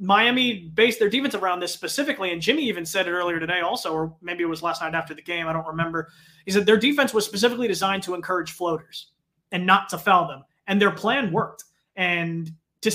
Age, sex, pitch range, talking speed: 20-39, male, 170-220 Hz, 225 wpm